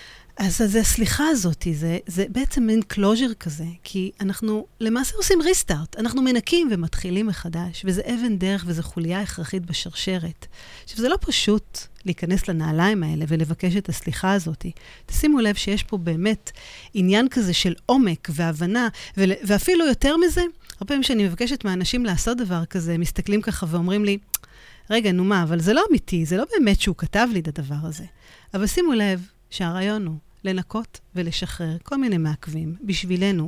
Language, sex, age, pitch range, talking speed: Hebrew, female, 40-59, 170-220 Hz, 160 wpm